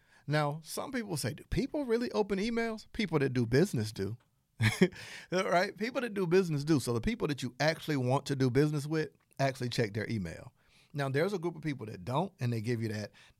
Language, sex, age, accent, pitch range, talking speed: English, male, 40-59, American, 130-180 Hz, 215 wpm